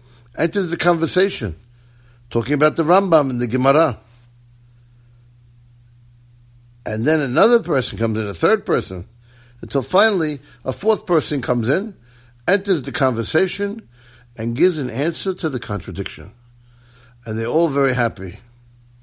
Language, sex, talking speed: English, male, 130 wpm